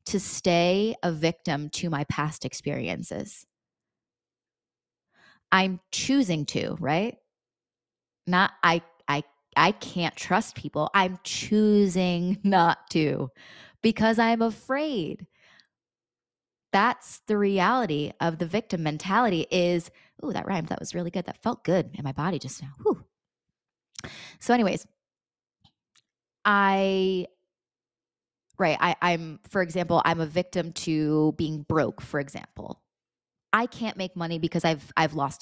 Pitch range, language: 155-190 Hz, English